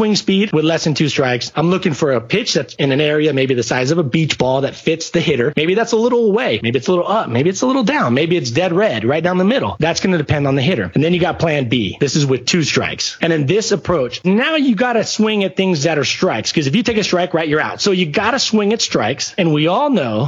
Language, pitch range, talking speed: English, 145-190 Hz, 305 wpm